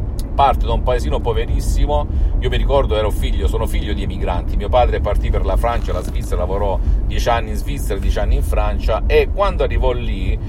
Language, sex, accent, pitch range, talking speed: Italian, male, native, 90-125 Hz, 200 wpm